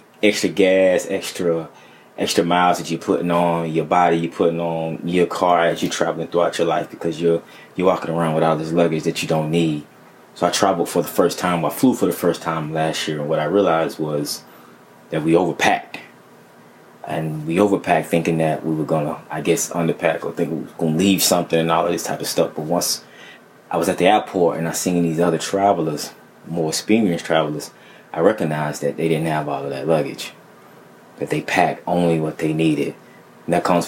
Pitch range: 80-85 Hz